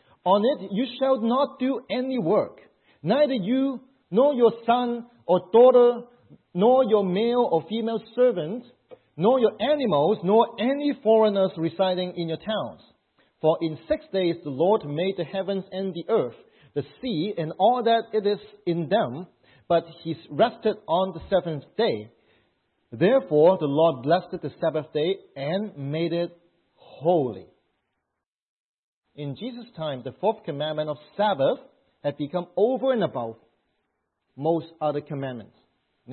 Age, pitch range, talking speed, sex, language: 40-59, 155-240 Hz, 145 wpm, male, English